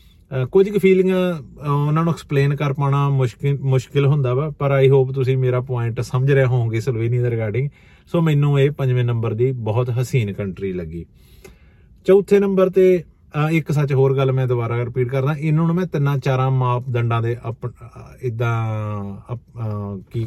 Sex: male